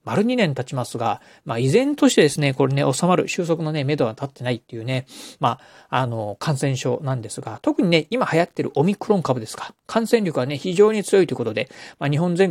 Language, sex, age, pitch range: Japanese, male, 40-59, 130-180 Hz